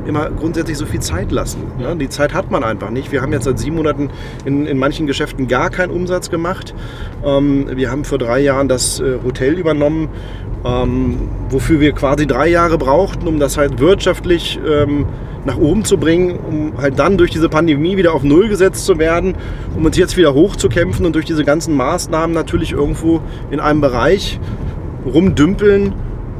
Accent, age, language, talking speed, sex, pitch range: German, 30-49, German, 185 wpm, male, 120-160 Hz